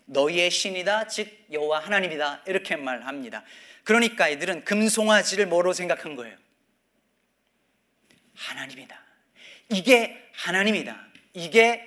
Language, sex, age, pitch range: Korean, male, 40-59, 180-220 Hz